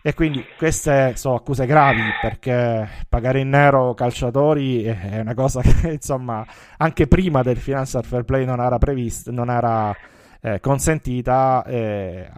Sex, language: male, Italian